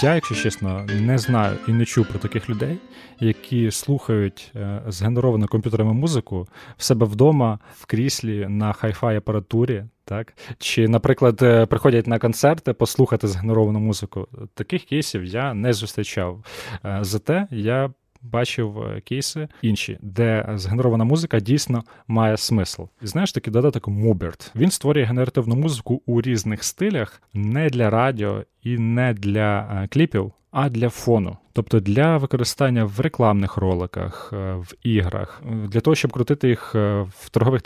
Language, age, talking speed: Ukrainian, 20-39, 135 wpm